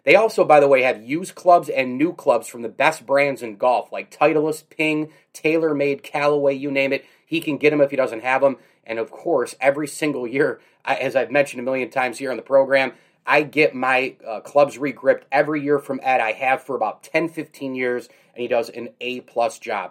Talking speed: 220 wpm